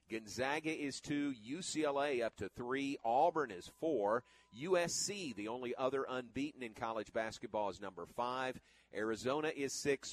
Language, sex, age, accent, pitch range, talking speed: English, male, 50-69, American, 110-140 Hz, 140 wpm